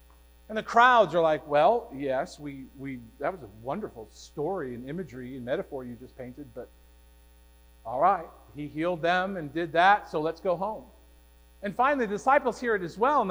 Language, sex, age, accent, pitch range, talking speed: English, male, 40-59, American, 155-215 Hz, 195 wpm